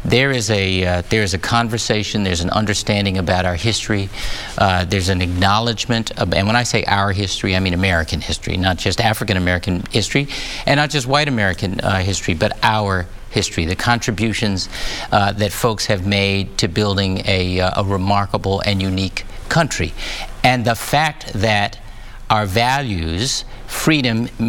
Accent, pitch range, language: American, 95-115 Hz, English